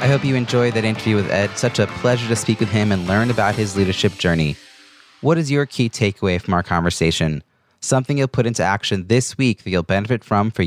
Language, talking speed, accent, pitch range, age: English, 230 wpm, American, 100-130 Hz, 30-49